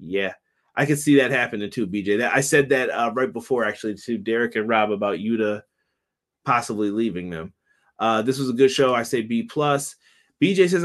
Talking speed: 200 wpm